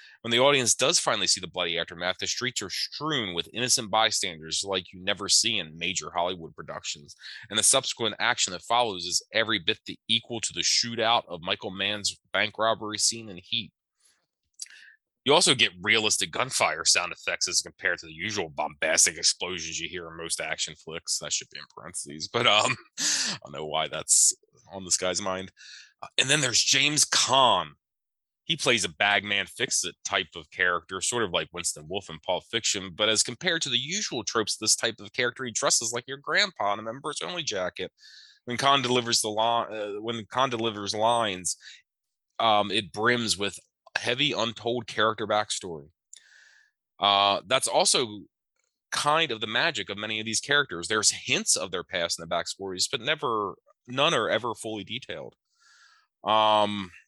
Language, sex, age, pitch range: English, male, 30-49, 95-115 Hz